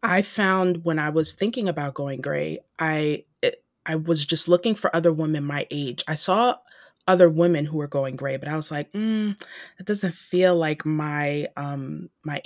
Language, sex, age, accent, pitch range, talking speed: English, female, 20-39, American, 150-180 Hz, 195 wpm